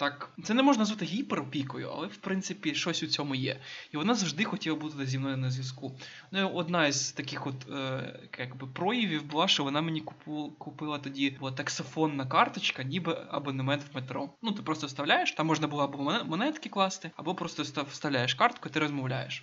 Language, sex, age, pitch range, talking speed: Ukrainian, male, 20-39, 140-170 Hz, 180 wpm